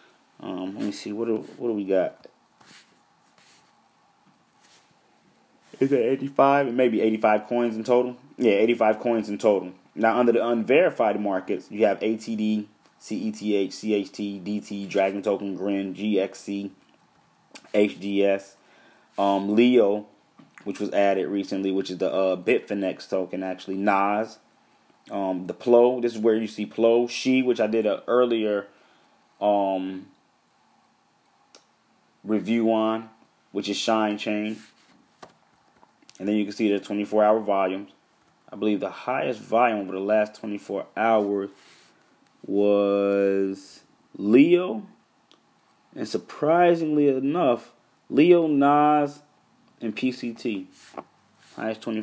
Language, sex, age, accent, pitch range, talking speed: English, male, 20-39, American, 100-120 Hz, 120 wpm